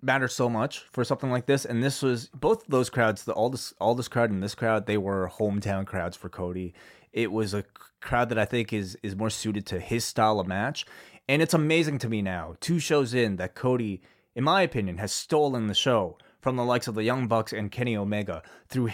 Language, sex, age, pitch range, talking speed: English, male, 20-39, 100-135 Hz, 220 wpm